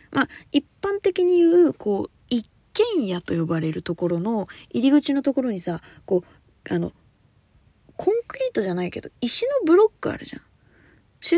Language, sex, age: Japanese, female, 20-39